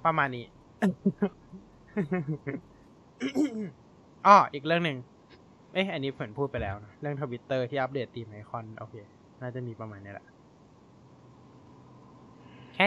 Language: Thai